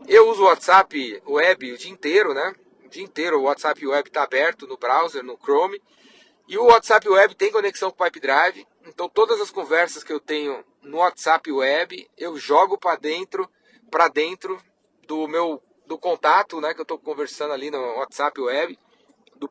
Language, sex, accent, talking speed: Portuguese, male, Brazilian, 190 wpm